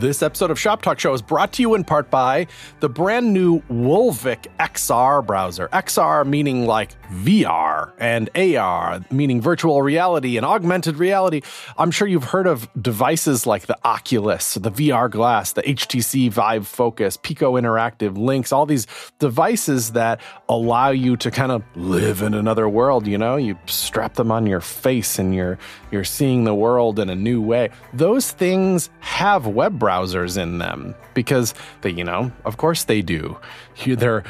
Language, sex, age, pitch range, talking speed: English, male, 30-49, 105-150 Hz, 170 wpm